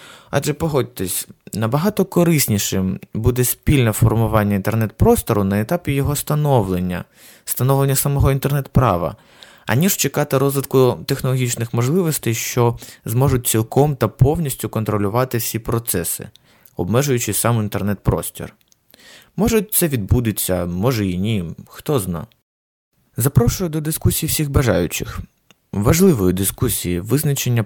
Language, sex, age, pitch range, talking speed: Ukrainian, male, 20-39, 110-140 Hz, 105 wpm